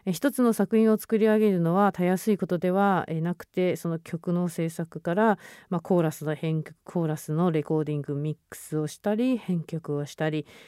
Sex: female